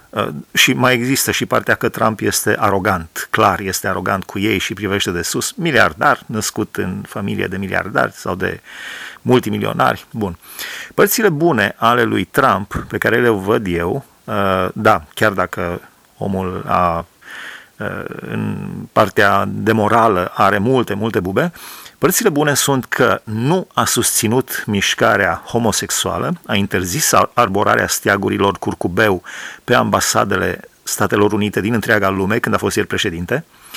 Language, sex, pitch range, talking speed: Romanian, male, 95-125 Hz, 135 wpm